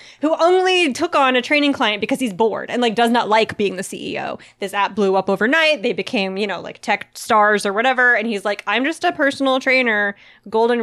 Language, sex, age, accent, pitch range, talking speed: English, female, 20-39, American, 200-270 Hz, 225 wpm